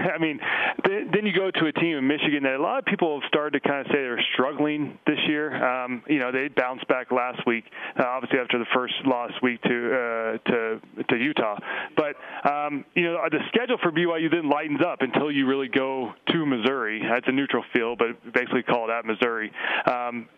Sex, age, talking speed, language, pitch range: male, 30-49, 210 wpm, English, 120-145 Hz